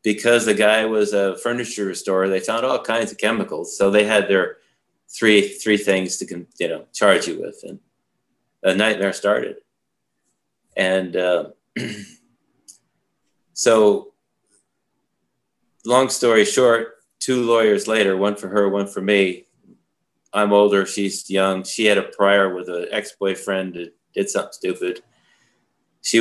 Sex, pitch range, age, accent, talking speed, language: male, 95-115 Hz, 30-49, American, 140 wpm, English